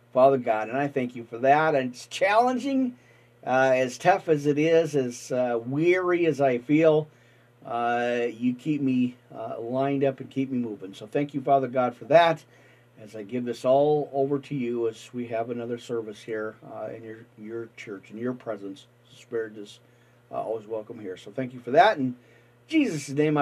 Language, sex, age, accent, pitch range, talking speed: English, male, 40-59, American, 120-165 Hz, 195 wpm